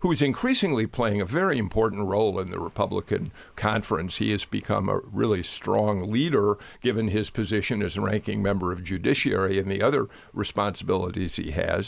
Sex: male